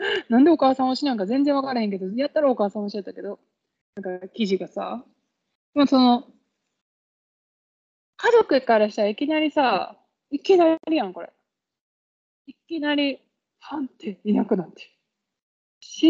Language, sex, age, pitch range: Japanese, female, 20-39, 205-275 Hz